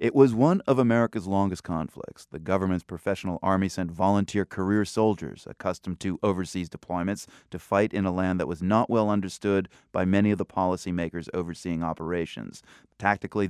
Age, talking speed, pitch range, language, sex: 30-49, 165 wpm, 90-110 Hz, English, male